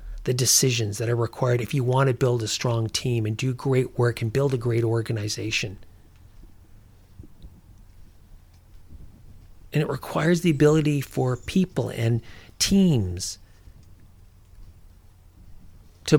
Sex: male